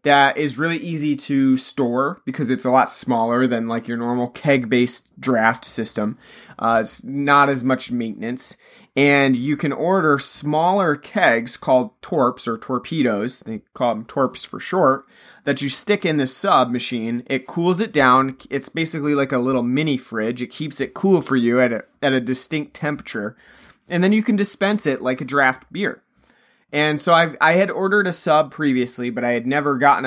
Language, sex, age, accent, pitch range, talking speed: English, male, 30-49, American, 125-150 Hz, 190 wpm